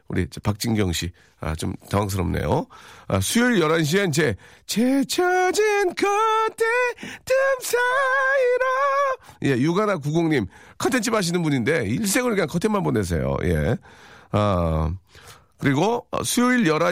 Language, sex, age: Korean, male, 40-59